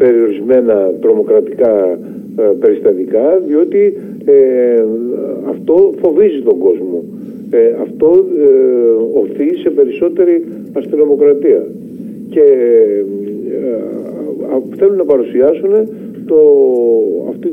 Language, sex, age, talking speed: Greek, male, 50-69, 85 wpm